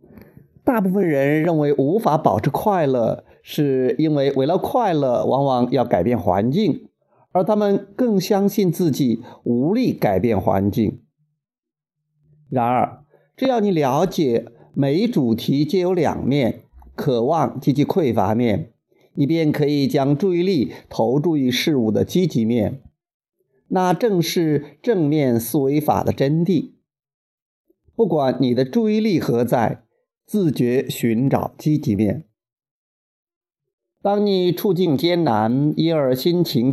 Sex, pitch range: male, 125-185 Hz